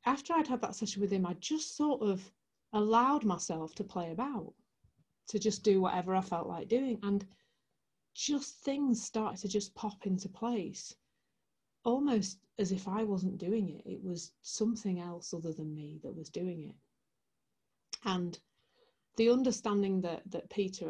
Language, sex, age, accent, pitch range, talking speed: English, female, 40-59, British, 170-215 Hz, 165 wpm